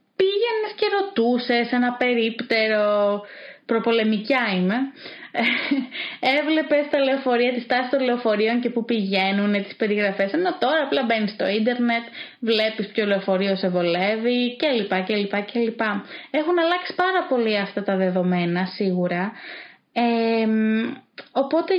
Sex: female